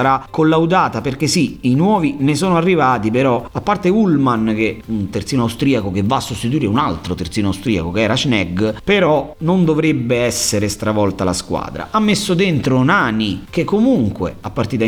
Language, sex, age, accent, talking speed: Italian, male, 40-59, native, 180 wpm